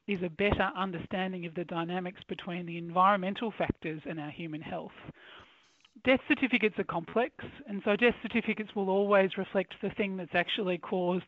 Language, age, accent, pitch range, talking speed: English, 30-49, Australian, 175-205 Hz, 165 wpm